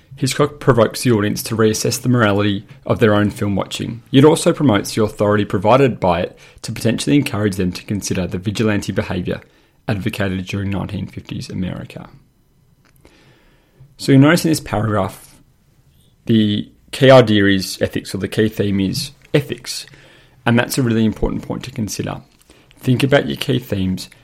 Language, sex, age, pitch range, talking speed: English, male, 30-49, 100-130 Hz, 160 wpm